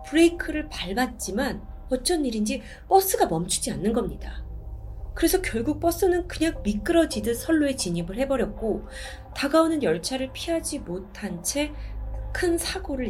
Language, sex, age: Korean, female, 30-49